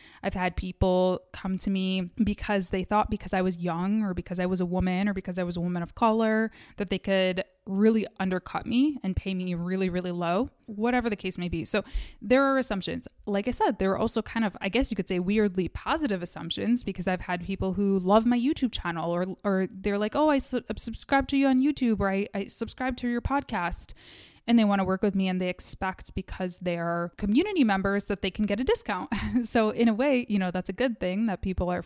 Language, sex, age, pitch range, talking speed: English, female, 20-39, 180-225 Hz, 230 wpm